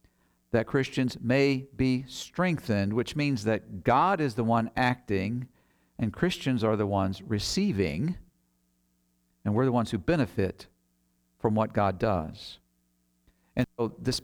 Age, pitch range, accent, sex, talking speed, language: 50-69, 90-125 Hz, American, male, 135 wpm, English